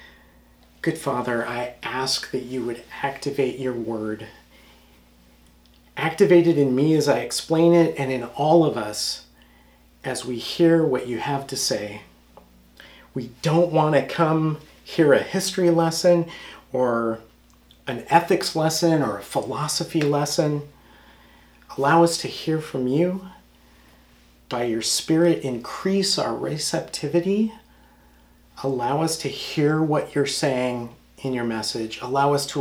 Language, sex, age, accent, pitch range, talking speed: English, male, 40-59, American, 105-150 Hz, 135 wpm